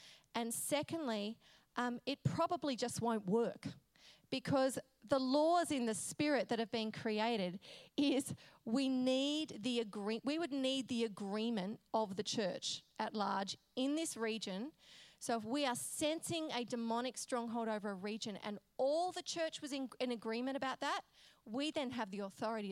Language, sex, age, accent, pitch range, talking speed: English, female, 30-49, Australian, 210-260 Hz, 165 wpm